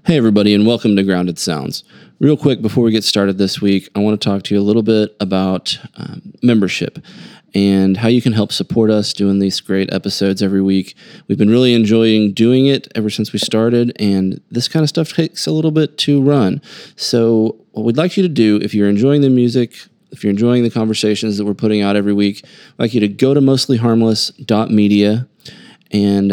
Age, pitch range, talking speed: 20-39, 100-135 Hz, 210 wpm